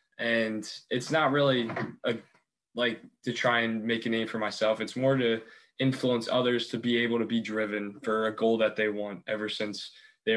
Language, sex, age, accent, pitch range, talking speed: English, male, 20-39, American, 110-130 Hz, 195 wpm